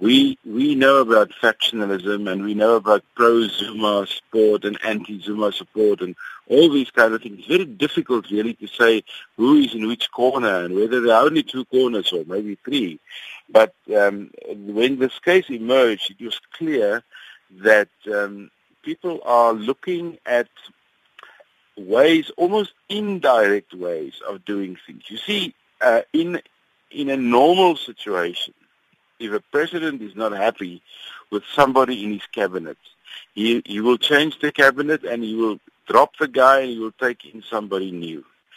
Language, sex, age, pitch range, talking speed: English, male, 60-79, 110-155 Hz, 155 wpm